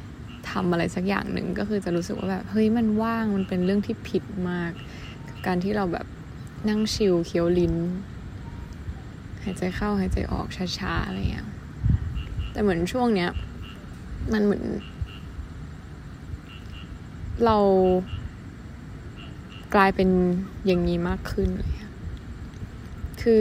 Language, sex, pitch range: Thai, female, 165-200 Hz